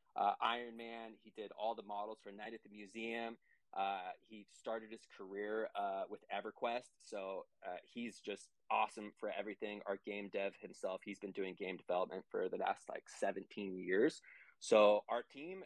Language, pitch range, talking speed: English, 100-115 Hz, 175 wpm